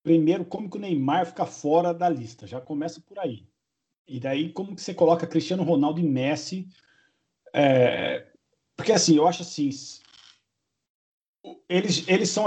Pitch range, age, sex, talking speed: 125-165 Hz, 50-69, male, 150 wpm